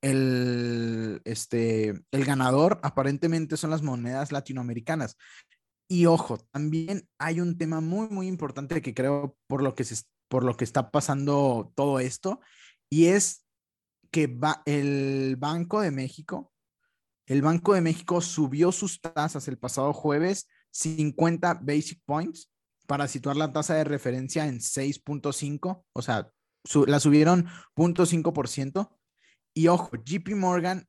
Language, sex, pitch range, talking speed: Spanish, male, 140-170 Hz, 135 wpm